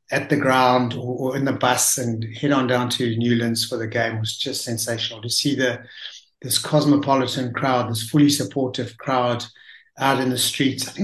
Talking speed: 195 wpm